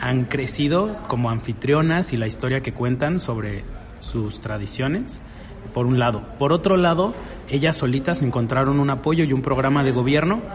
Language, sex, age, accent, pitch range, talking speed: Spanish, male, 30-49, Mexican, 120-145 Hz, 160 wpm